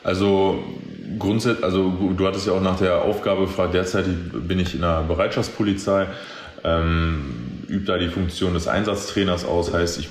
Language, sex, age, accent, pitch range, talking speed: German, male, 20-39, German, 85-95 Hz, 160 wpm